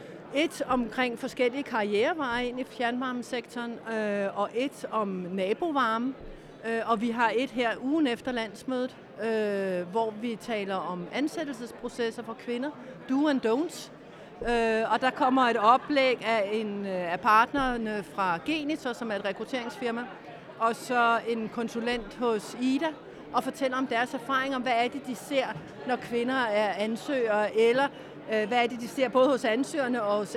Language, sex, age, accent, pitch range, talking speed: Danish, female, 60-79, native, 225-265 Hz, 160 wpm